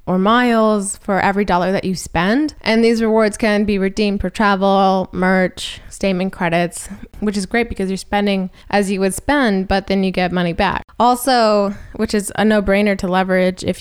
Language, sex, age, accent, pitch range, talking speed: English, female, 20-39, American, 180-220 Hz, 190 wpm